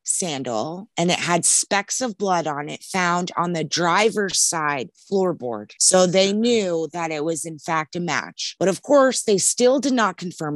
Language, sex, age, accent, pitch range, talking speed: English, female, 20-39, American, 145-170 Hz, 190 wpm